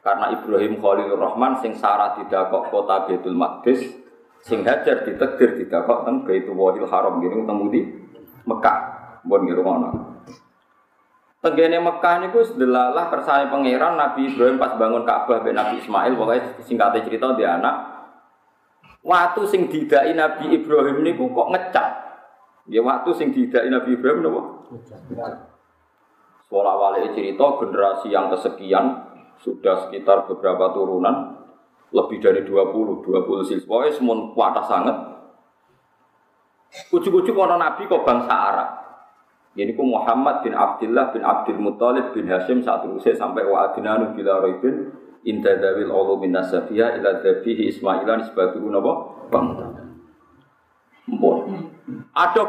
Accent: native